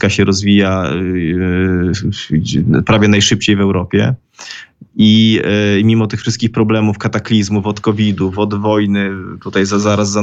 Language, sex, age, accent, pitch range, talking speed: Polish, male, 20-39, native, 100-110 Hz, 130 wpm